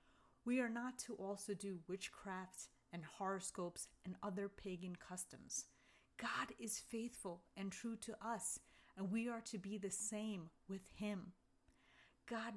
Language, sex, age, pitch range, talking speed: English, female, 30-49, 180-220 Hz, 145 wpm